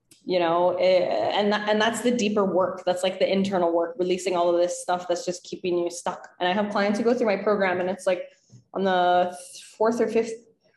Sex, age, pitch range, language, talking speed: female, 10-29, 165-190 Hz, English, 235 wpm